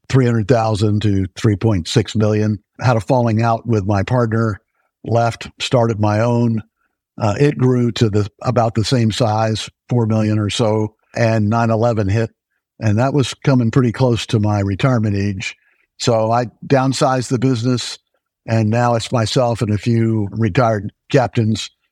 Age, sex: 60-79, male